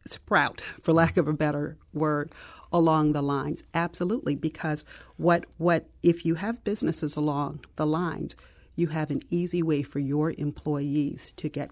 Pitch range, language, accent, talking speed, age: 145-165 Hz, English, American, 160 wpm, 40-59